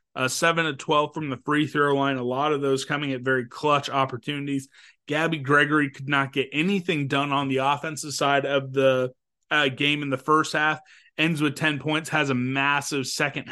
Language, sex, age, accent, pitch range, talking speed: English, male, 30-49, American, 130-150 Hz, 200 wpm